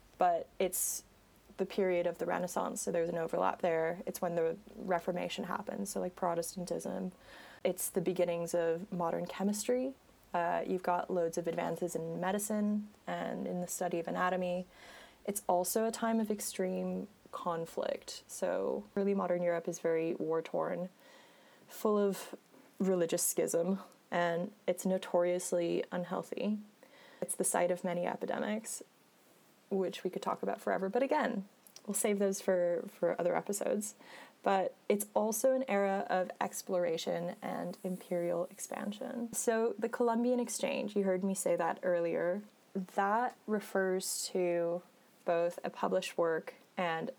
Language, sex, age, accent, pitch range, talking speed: English, female, 20-39, American, 175-210 Hz, 140 wpm